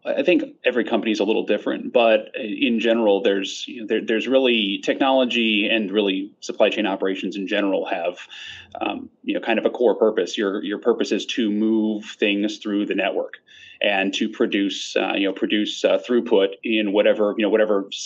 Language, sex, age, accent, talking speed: English, male, 30-49, American, 195 wpm